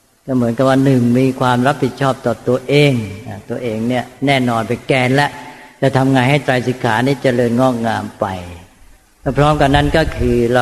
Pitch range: 120-145 Hz